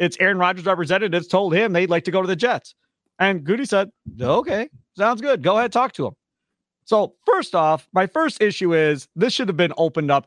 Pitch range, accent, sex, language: 160-225 Hz, American, male, English